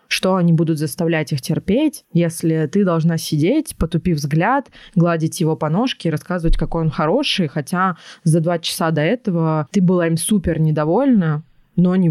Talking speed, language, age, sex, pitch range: 165 wpm, Russian, 20-39, female, 160-195 Hz